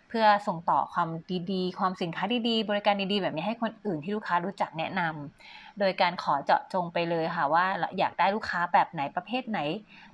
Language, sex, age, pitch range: Thai, female, 20-39, 175-215 Hz